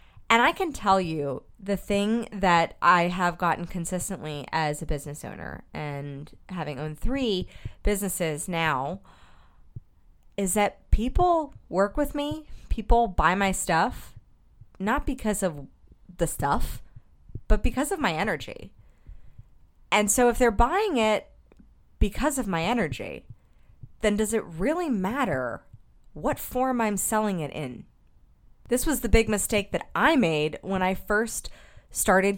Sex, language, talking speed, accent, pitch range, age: female, English, 140 wpm, American, 170-220 Hz, 30-49